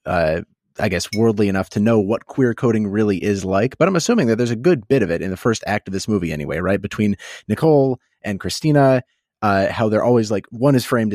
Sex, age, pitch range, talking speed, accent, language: male, 30-49, 95-125 Hz, 235 wpm, American, English